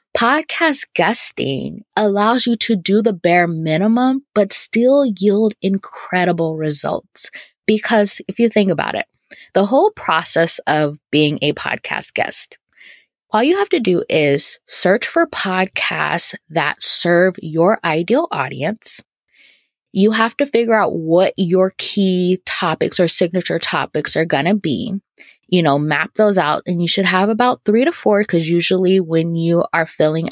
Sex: female